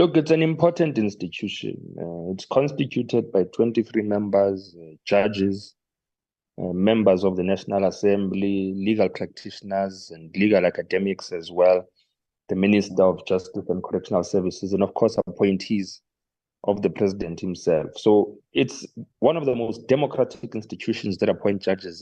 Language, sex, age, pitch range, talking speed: English, male, 30-49, 95-115 Hz, 140 wpm